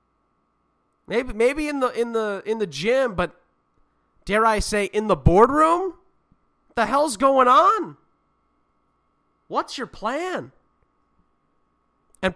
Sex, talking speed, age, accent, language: male, 120 wpm, 30-49, American, English